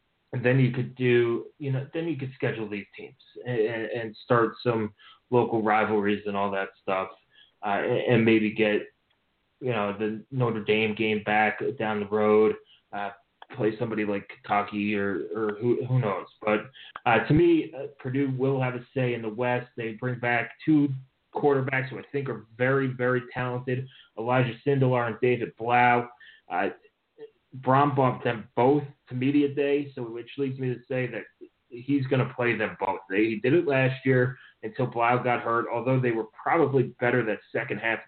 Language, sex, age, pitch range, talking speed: English, male, 20-39, 110-135 Hz, 185 wpm